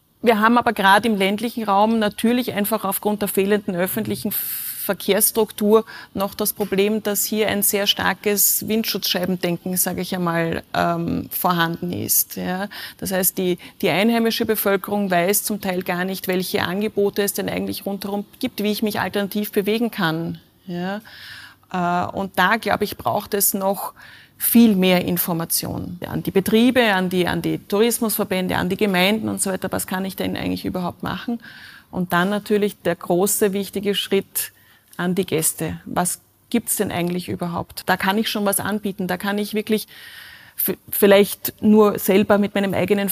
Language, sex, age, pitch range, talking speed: German, female, 30-49, 180-210 Hz, 160 wpm